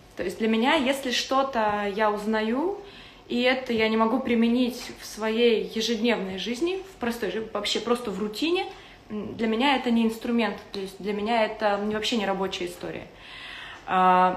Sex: female